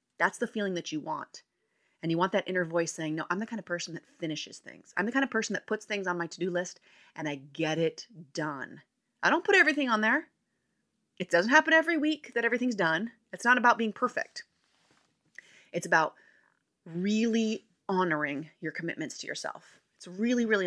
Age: 30-49